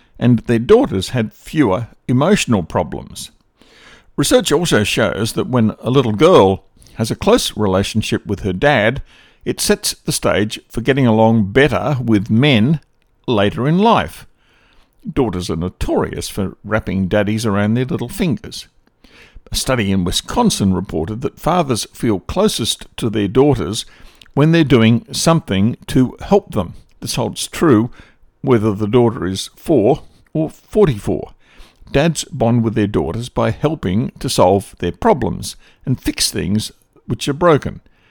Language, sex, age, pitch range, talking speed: English, male, 60-79, 100-125 Hz, 145 wpm